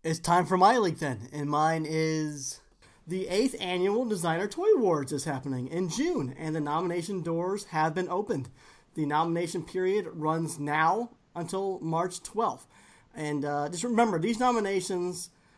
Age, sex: 30-49, male